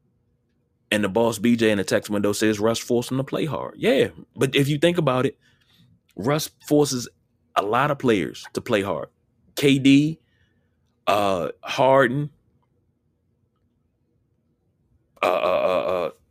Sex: male